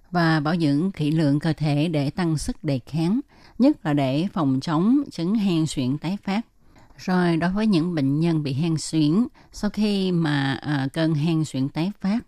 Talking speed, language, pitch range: 190 wpm, Vietnamese, 145-185 Hz